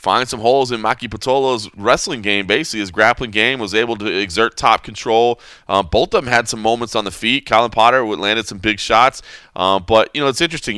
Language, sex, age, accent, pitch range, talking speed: English, male, 20-39, American, 85-110 Hz, 230 wpm